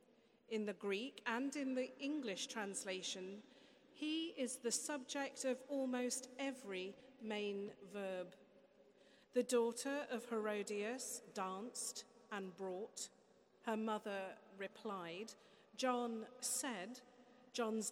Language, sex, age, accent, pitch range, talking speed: English, female, 40-59, British, 200-255 Hz, 100 wpm